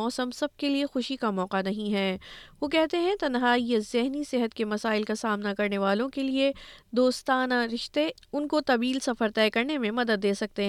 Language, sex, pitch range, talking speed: Urdu, female, 220-260 Hz, 195 wpm